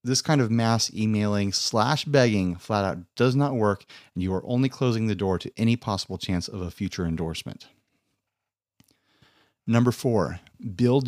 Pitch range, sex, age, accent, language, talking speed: 95-120 Hz, male, 30-49, American, English, 160 wpm